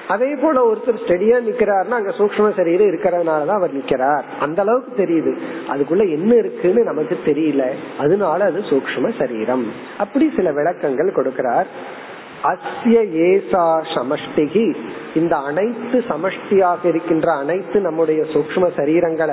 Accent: native